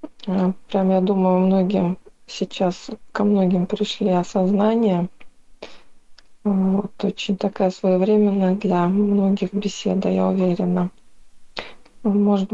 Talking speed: 85 wpm